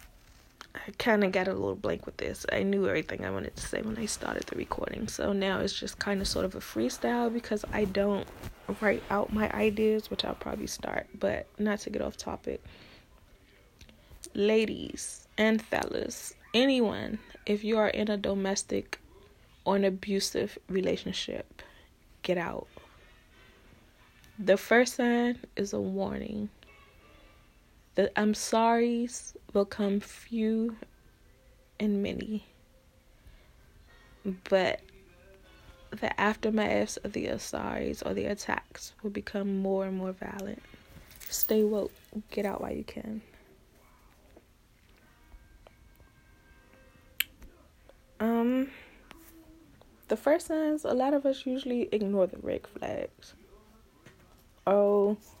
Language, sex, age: English, female, 20-39